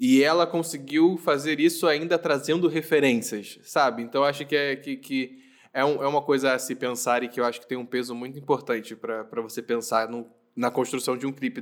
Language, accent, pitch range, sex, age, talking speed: Portuguese, Brazilian, 125-160 Hz, male, 10-29, 215 wpm